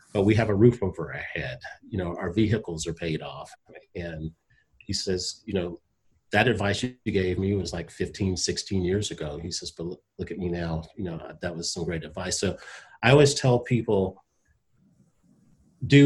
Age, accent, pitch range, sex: 40-59, American, 95-120 Hz, male